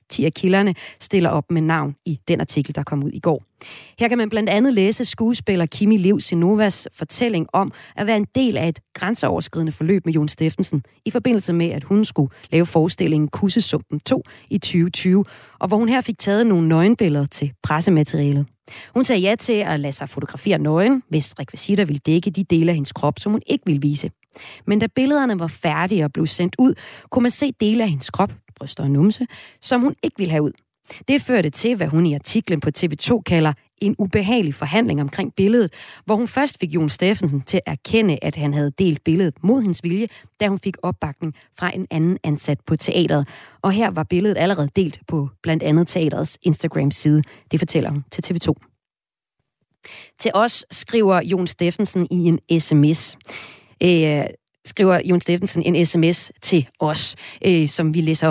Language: Danish